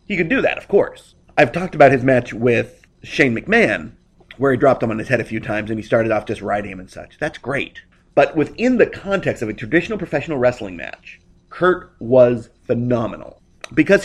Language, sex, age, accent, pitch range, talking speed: English, male, 30-49, American, 115-165 Hz, 210 wpm